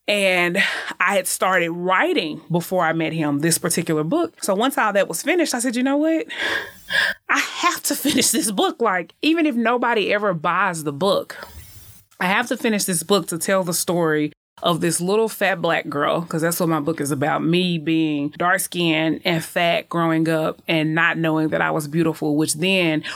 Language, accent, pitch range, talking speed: English, American, 155-180 Hz, 200 wpm